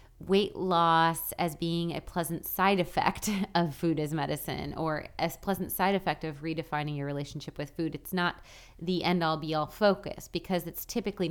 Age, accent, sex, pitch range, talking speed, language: 30-49, American, female, 150-185 Hz, 170 wpm, English